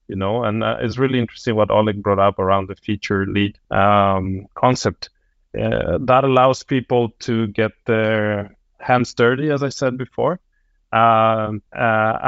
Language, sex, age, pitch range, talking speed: English, male, 30-49, 100-120 Hz, 155 wpm